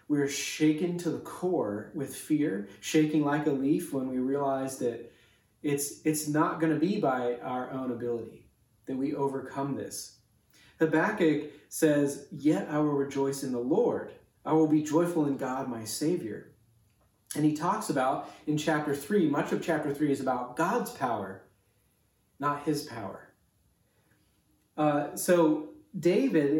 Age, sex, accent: 30-49, male, American